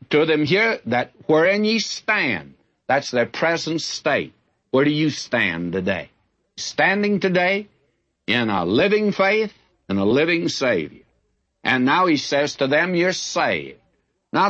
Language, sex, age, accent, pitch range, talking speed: English, male, 60-79, American, 130-185 Hz, 145 wpm